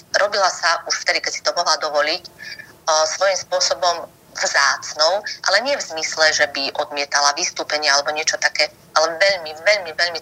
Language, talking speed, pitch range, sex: Slovak, 160 wpm, 150-185 Hz, female